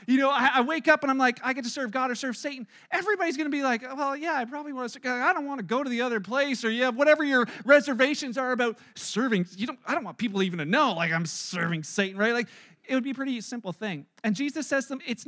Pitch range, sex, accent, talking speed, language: 220-280 Hz, male, American, 285 wpm, English